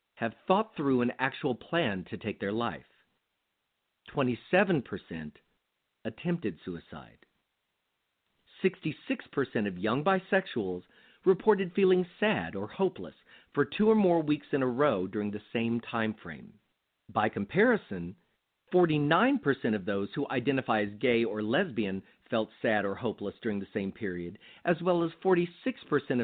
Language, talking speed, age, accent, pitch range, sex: English, 135 wpm, 50-69, American, 115-185 Hz, male